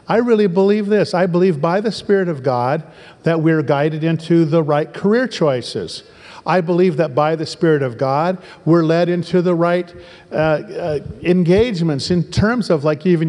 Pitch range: 165-205 Hz